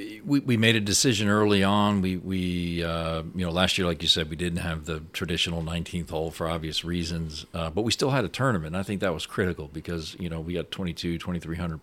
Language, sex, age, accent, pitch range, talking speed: English, male, 40-59, American, 80-95 Hz, 240 wpm